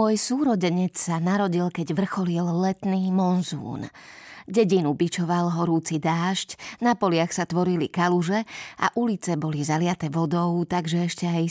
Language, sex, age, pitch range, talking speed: Slovak, female, 20-39, 170-210 Hz, 130 wpm